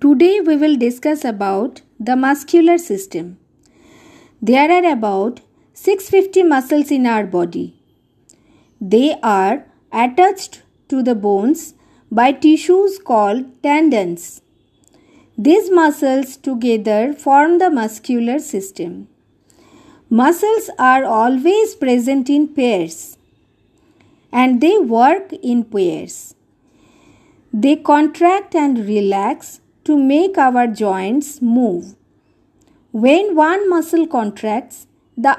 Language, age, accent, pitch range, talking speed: English, 50-69, Indian, 230-325 Hz, 100 wpm